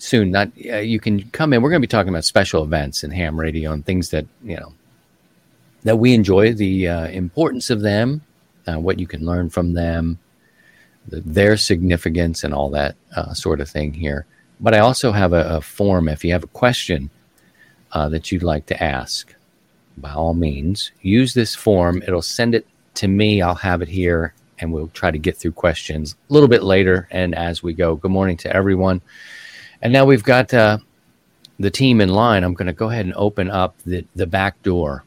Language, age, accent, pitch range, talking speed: English, 40-59, American, 85-105 Hz, 210 wpm